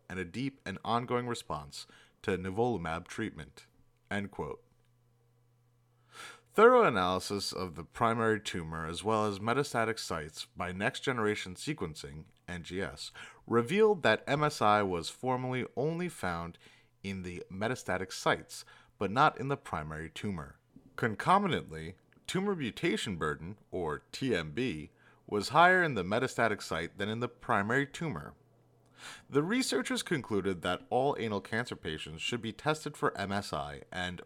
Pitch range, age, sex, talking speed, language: 90-125 Hz, 30-49, male, 130 wpm, English